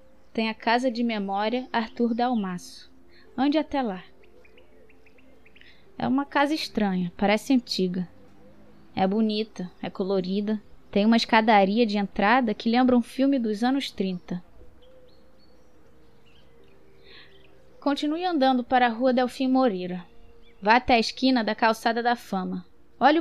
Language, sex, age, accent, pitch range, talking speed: Portuguese, female, 10-29, Brazilian, 195-255 Hz, 125 wpm